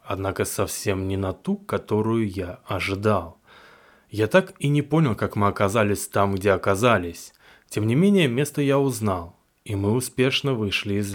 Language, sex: Russian, male